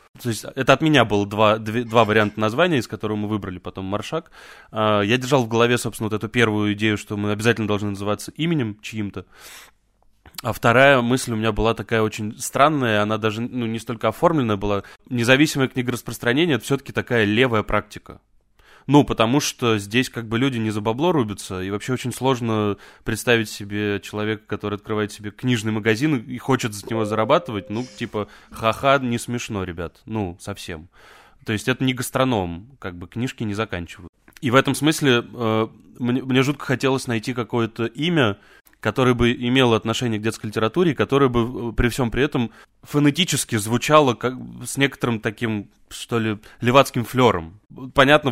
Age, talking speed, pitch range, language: 20-39, 170 wpm, 105-130 Hz, Russian